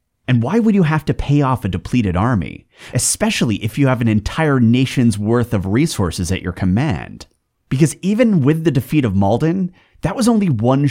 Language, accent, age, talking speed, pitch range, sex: English, American, 30-49, 195 wpm, 90-125 Hz, male